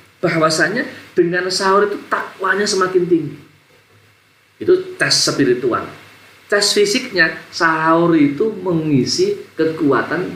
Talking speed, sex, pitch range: 95 wpm, male, 115-180 Hz